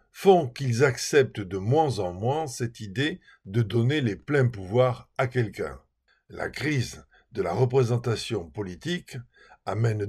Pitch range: 115-155 Hz